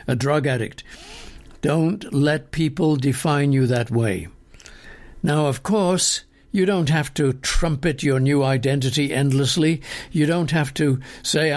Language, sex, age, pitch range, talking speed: English, male, 60-79, 125-160 Hz, 140 wpm